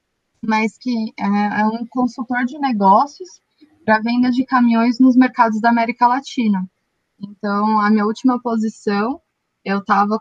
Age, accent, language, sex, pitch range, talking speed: 20-39, Brazilian, Portuguese, female, 210-250 Hz, 135 wpm